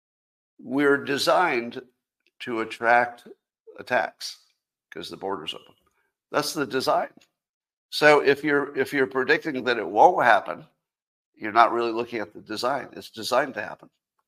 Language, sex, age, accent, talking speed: English, male, 60-79, American, 140 wpm